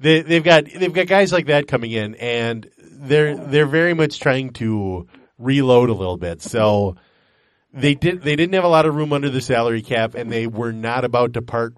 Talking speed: 215 wpm